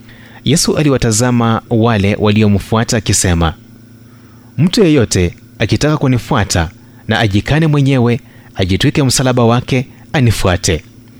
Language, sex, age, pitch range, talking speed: Swahili, male, 30-49, 110-125 Hz, 85 wpm